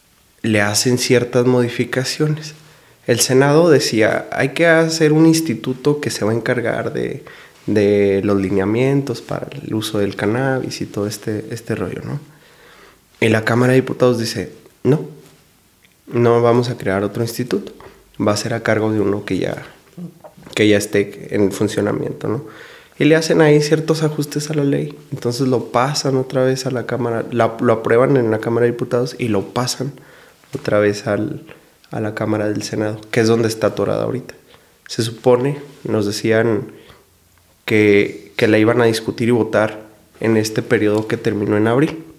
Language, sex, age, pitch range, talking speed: Spanish, male, 20-39, 110-130 Hz, 170 wpm